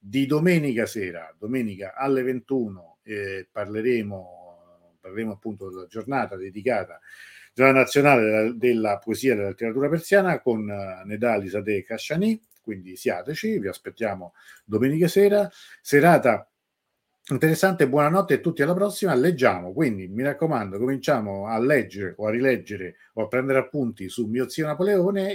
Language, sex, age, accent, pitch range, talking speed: Italian, male, 50-69, native, 100-145 Hz, 140 wpm